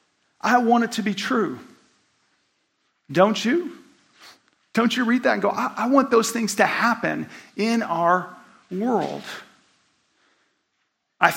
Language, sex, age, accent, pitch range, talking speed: English, male, 40-59, American, 180-225 Hz, 130 wpm